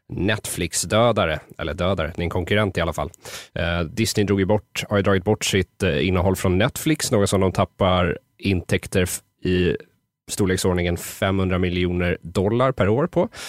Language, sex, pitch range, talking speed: Swedish, male, 95-120 Hz, 160 wpm